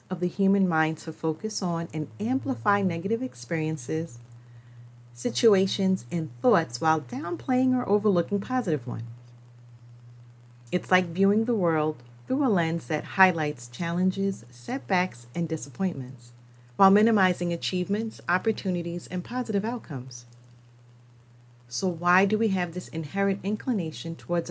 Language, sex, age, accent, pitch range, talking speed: English, female, 40-59, American, 125-195 Hz, 120 wpm